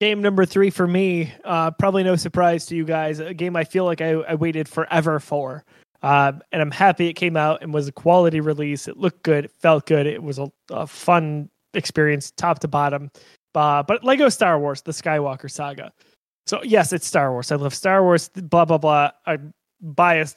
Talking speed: 210 wpm